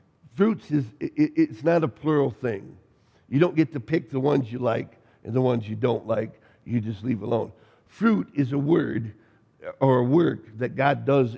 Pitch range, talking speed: 120-155 Hz, 195 wpm